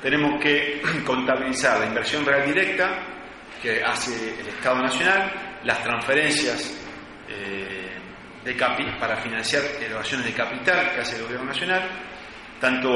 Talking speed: 120 wpm